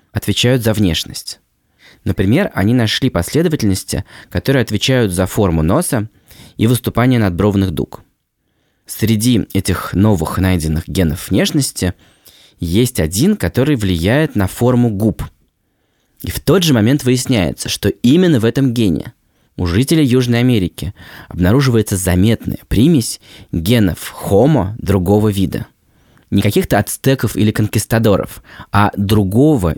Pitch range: 95-125 Hz